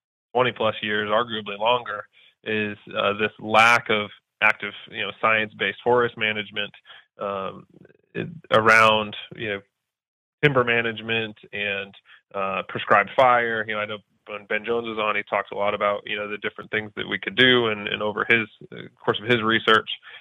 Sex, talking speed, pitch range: male, 175 wpm, 105-115 Hz